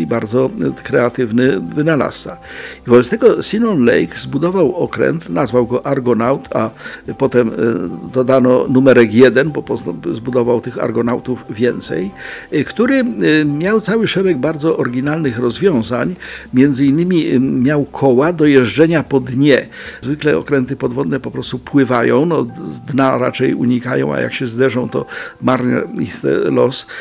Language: Polish